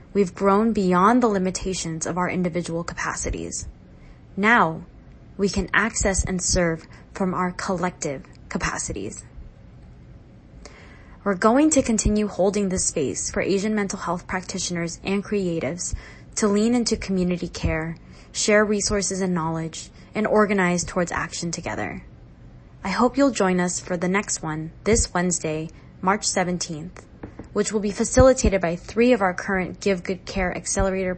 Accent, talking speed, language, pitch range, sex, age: American, 140 wpm, English, 175-205 Hz, female, 20-39